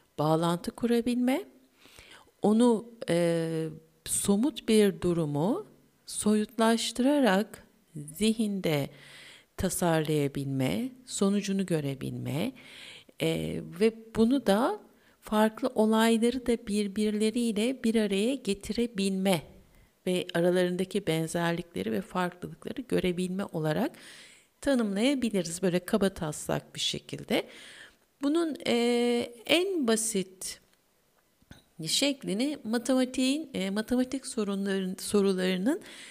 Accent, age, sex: native, 60-79, female